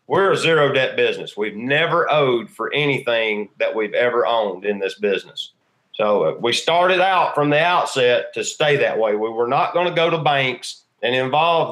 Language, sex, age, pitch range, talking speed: English, male, 40-59, 135-180 Hz, 195 wpm